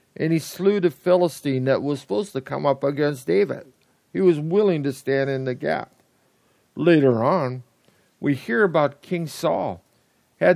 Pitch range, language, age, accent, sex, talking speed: 125-170 Hz, English, 50-69, American, male, 165 wpm